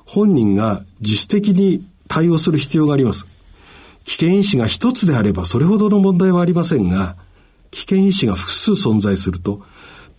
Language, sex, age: Japanese, male, 50-69